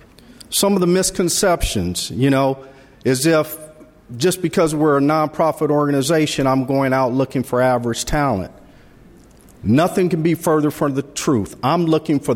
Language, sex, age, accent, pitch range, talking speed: English, male, 50-69, American, 135-155 Hz, 150 wpm